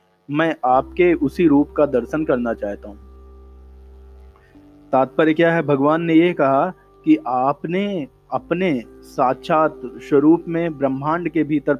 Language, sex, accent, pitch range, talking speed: Hindi, male, native, 135-170 Hz, 125 wpm